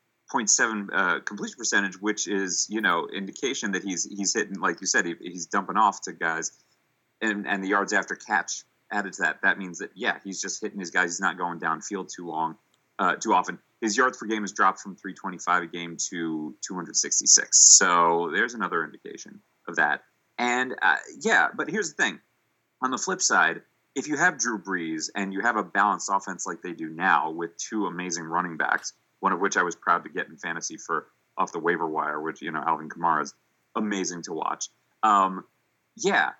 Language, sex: English, male